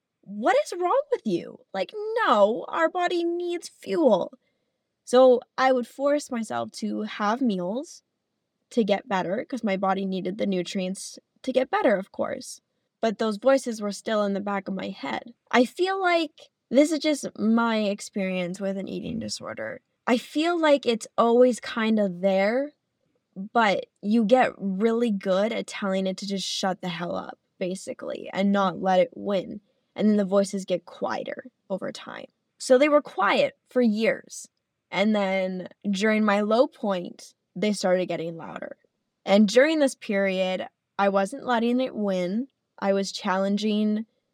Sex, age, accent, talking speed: female, 10-29, American, 160 wpm